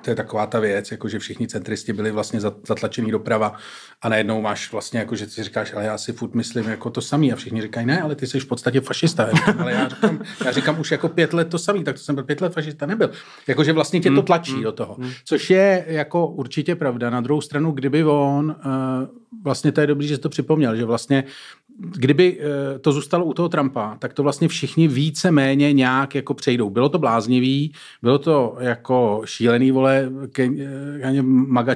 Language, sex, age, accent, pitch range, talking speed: Czech, male, 40-59, native, 125-150 Hz, 200 wpm